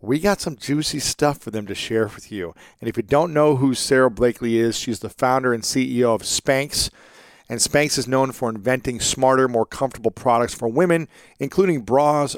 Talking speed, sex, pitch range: 200 wpm, male, 120-150 Hz